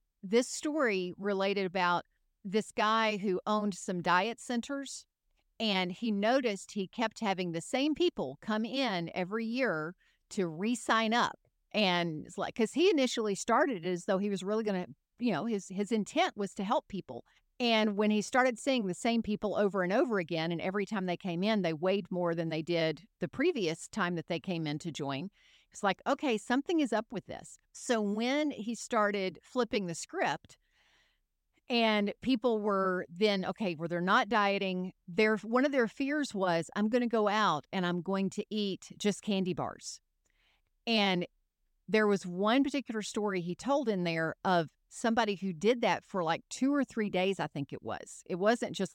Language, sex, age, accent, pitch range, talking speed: English, female, 50-69, American, 180-225 Hz, 190 wpm